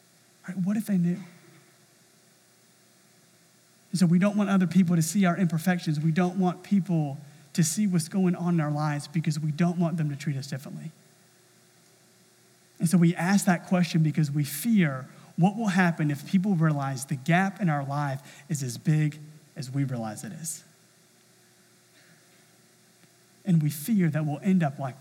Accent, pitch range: American, 150-180 Hz